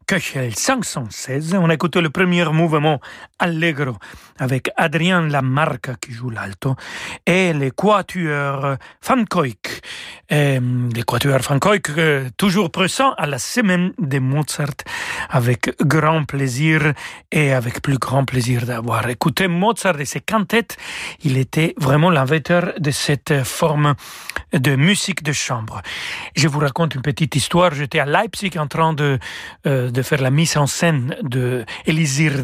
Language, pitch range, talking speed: French, 135-175 Hz, 135 wpm